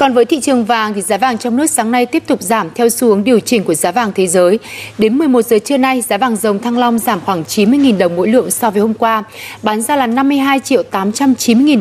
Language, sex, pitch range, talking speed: Vietnamese, female, 190-250 Hz, 250 wpm